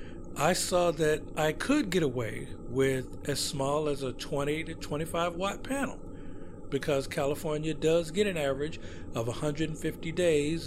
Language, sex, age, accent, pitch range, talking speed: English, male, 50-69, American, 120-170 Hz, 145 wpm